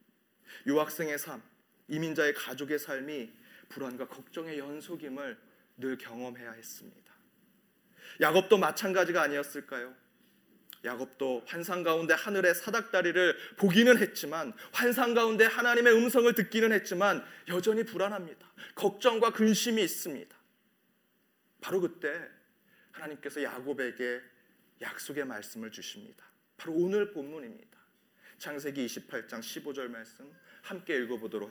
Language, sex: Korean, male